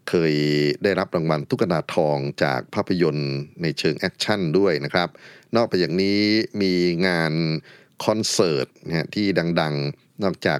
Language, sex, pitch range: Thai, male, 75-95 Hz